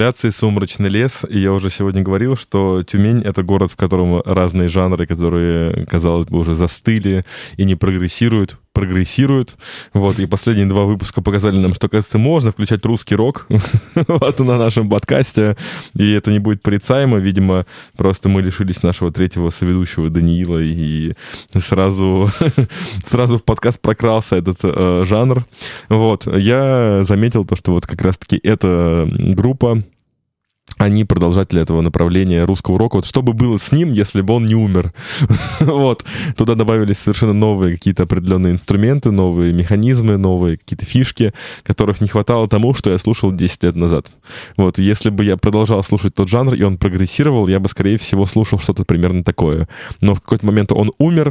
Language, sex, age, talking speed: Russian, male, 20-39, 160 wpm